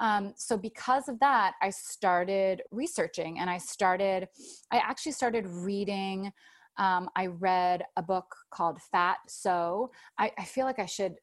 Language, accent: English, American